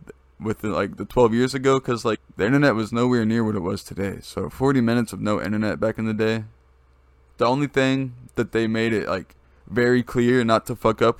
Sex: male